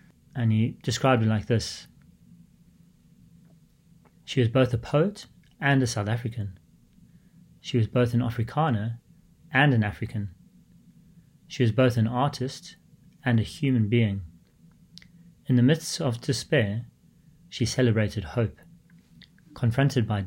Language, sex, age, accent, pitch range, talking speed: English, male, 30-49, British, 110-150 Hz, 125 wpm